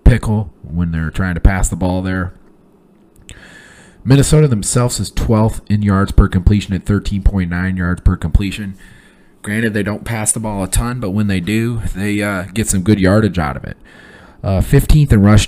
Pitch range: 80-105 Hz